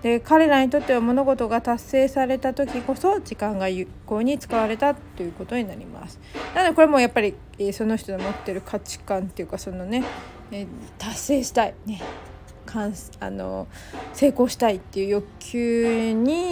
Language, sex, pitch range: Japanese, female, 195-260 Hz